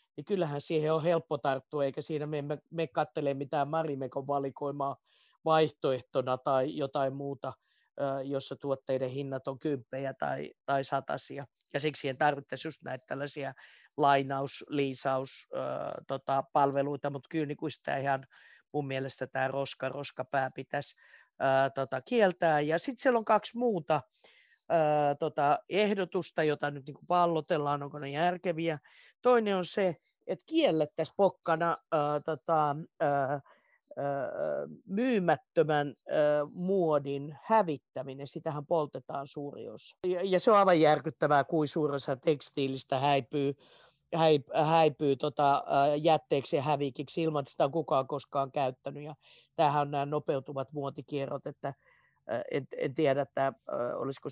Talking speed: 135 wpm